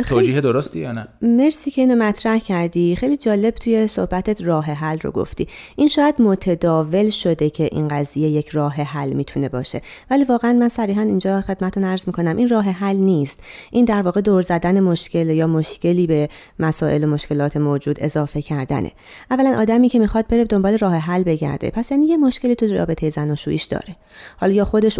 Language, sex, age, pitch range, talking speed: Persian, female, 30-49, 155-220 Hz, 190 wpm